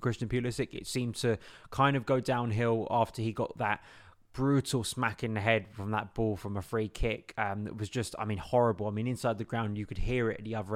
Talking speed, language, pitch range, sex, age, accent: 245 wpm, English, 105-120 Hz, male, 20-39, British